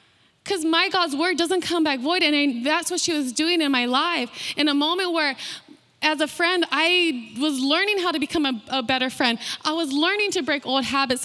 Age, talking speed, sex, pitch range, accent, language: 20-39, 225 wpm, female, 295-365 Hz, American, English